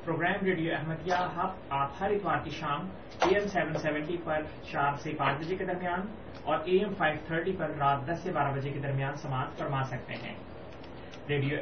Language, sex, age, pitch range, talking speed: Urdu, male, 30-49, 145-180 Hz, 195 wpm